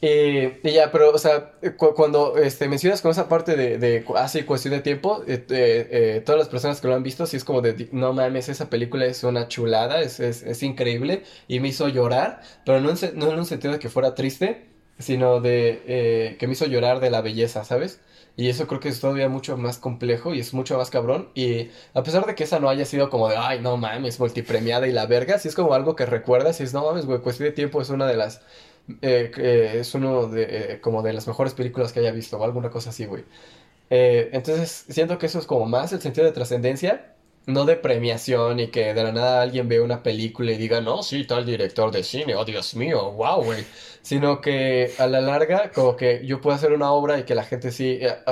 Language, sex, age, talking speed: Spanish, male, 20-39, 245 wpm